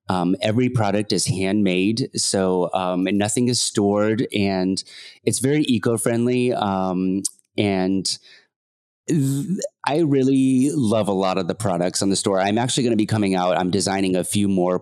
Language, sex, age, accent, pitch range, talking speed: English, male, 30-49, American, 90-115 Hz, 165 wpm